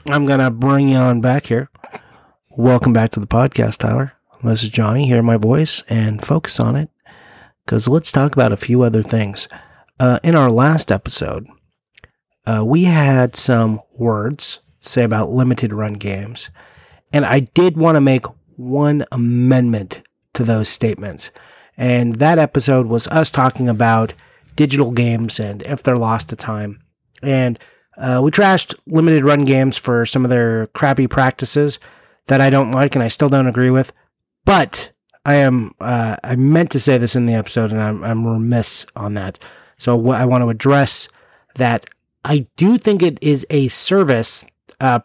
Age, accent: 40-59, American